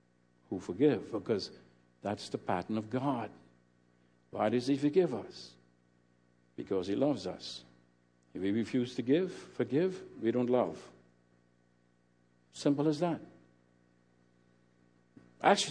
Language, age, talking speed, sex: English, 60-79, 115 wpm, male